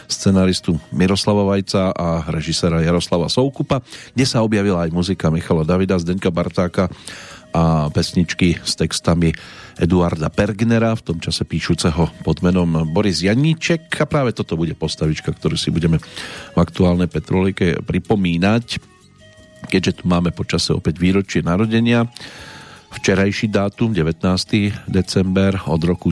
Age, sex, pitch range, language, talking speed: 40-59, male, 85-105 Hz, Slovak, 125 wpm